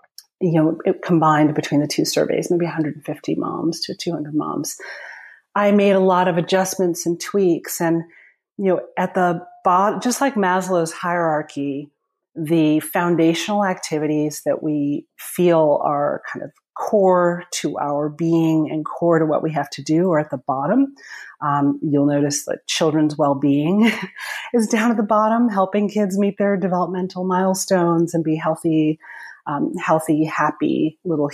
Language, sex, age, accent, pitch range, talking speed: English, female, 30-49, American, 155-190 Hz, 155 wpm